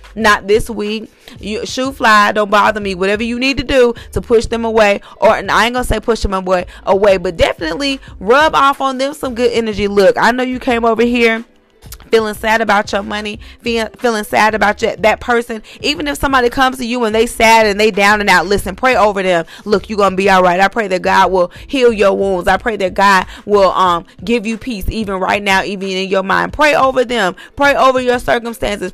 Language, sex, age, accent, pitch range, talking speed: English, female, 30-49, American, 195-235 Hz, 225 wpm